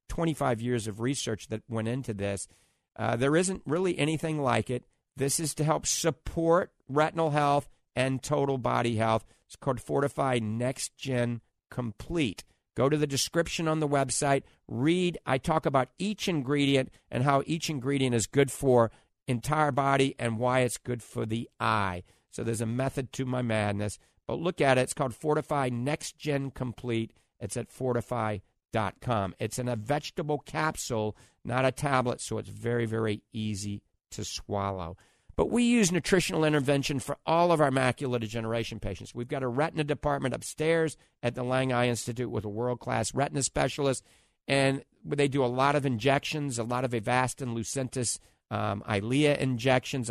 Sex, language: male, English